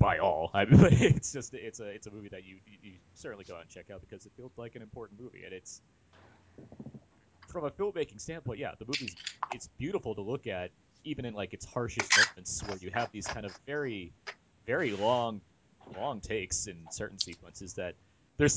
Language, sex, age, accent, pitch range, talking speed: English, male, 30-49, American, 95-125 Hz, 200 wpm